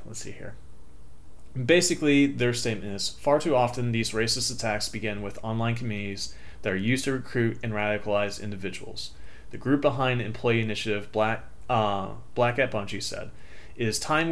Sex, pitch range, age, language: male, 105-125 Hz, 30-49, English